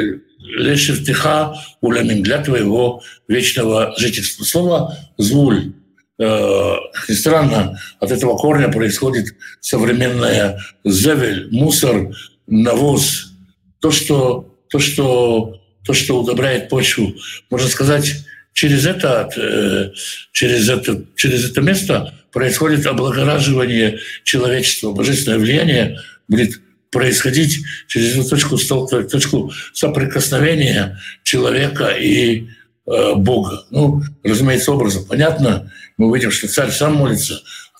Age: 60-79